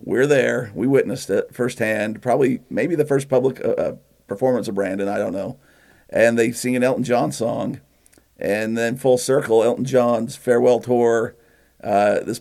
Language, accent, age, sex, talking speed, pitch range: English, American, 50-69, male, 170 wpm, 115-135 Hz